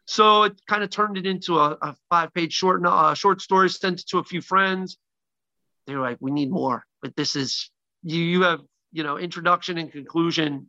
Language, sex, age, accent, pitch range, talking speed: English, male, 40-59, American, 140-180 Hz, 200 wpm